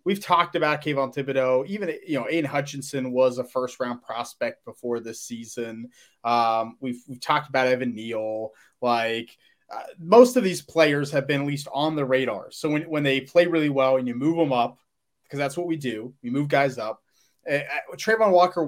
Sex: male